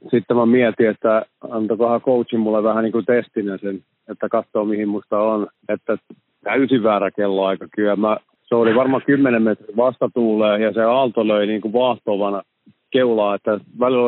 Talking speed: 160 wpm